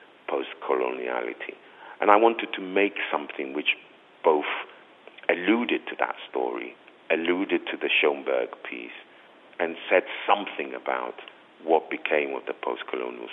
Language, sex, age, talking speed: English, male, 50-69, 120 wpm